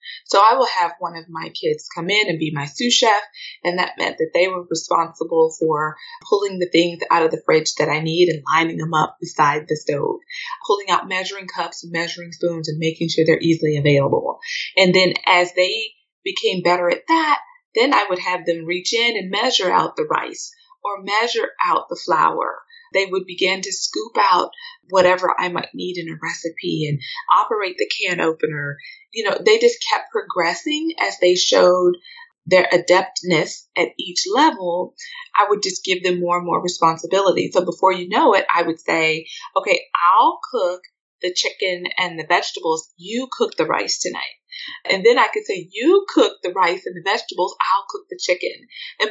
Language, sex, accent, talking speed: English, female, American, 190 wpm